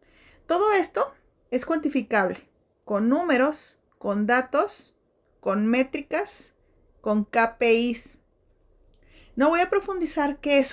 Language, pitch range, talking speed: Spanish, 210-275 Hz, 100 wpm